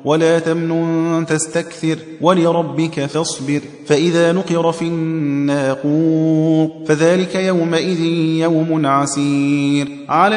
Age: 30-49